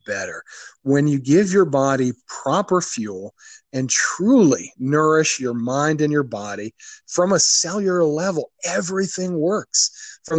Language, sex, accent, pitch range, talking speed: English, male, American, 140-190 Hz, 135 wpm